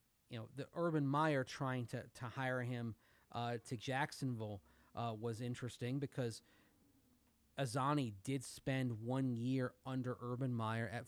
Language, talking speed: English, 140 wpm